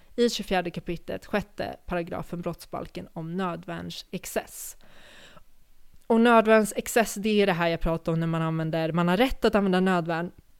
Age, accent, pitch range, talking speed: 20-39, native, 175-215 Hz, 160 wpm